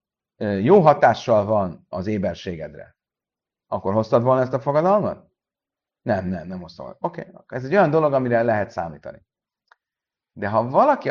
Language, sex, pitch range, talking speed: Hungarian, male, 125-165 Hz, 145 wpm